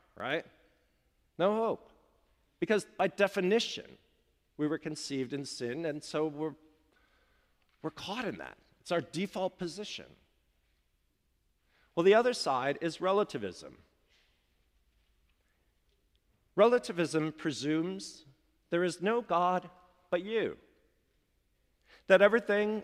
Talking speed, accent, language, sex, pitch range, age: 100 wpm, American, English, male, 155-225 Hz, 50-69